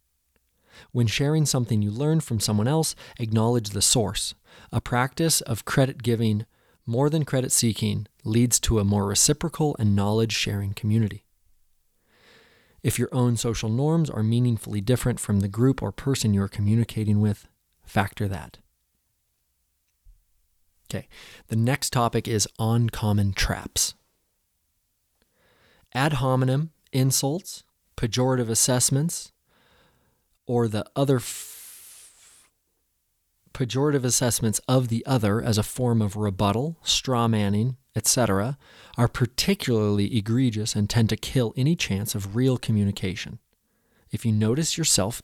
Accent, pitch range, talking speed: American, 105-130 Hz, 120 wpm